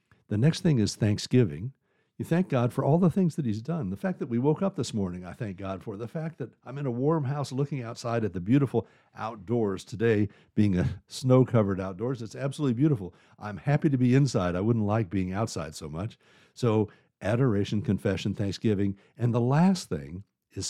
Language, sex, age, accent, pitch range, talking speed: English, male, 60-79, American, 95-140 Hz, 205 wpm